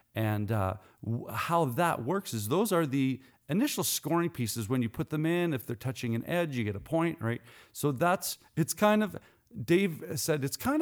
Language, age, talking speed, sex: English, 40-59, 200 wpm, male